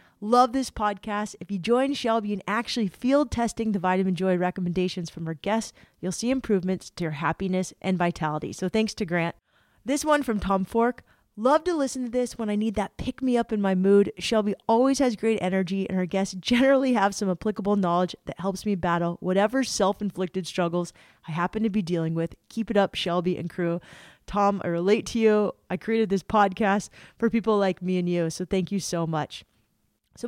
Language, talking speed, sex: English, 205 wpm, female